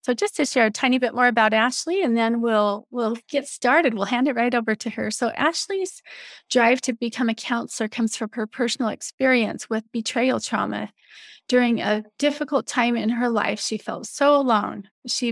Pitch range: 220-255 Hz